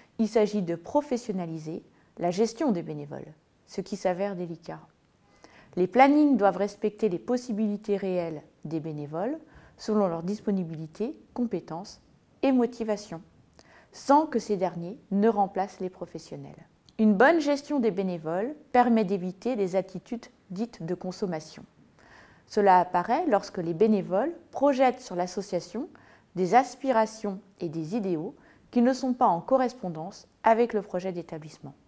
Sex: female